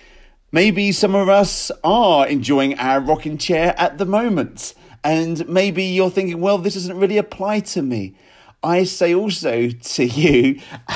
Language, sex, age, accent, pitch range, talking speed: English, male, 40-59, British, 130-190 Hz, 155 wpm